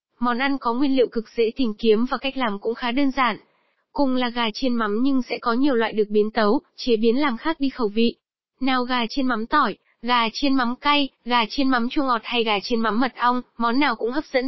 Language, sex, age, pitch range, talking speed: Vietnamese, female, 10-29, 220-265 Hz, 255 wpm